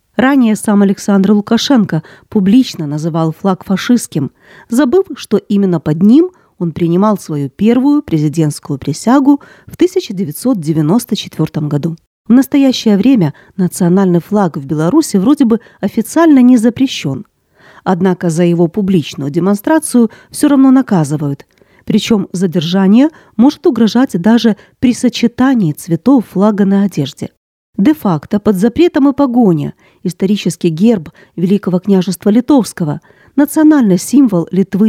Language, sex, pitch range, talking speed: Ukrainian, female, 170-250 Hz, 115 wpm